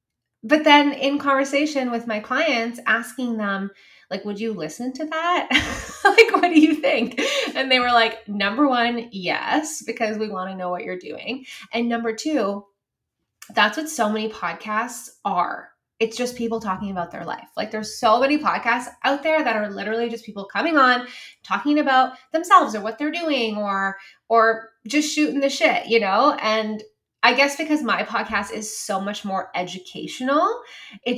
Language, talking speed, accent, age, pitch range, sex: English, 175 wpm, American, 20-39, 205-275 Hz, female